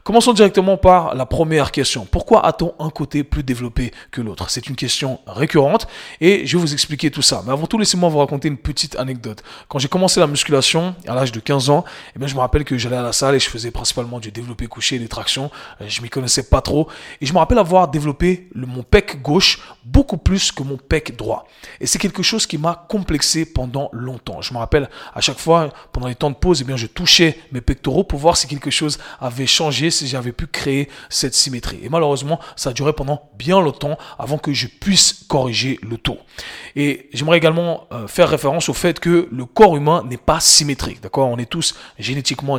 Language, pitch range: French, 130-165 Hz